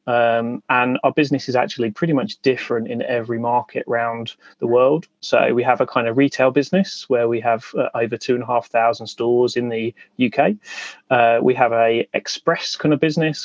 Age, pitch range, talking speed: 30-49, 115-130 Hz, 200 wpm